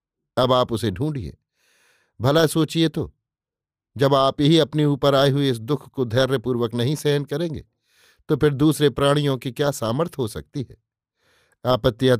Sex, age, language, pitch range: male, 50-69, Hindi, 120-145 Hz